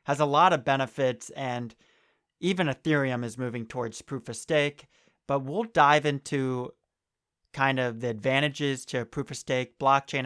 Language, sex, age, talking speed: English, male, 30-49, 160 wpm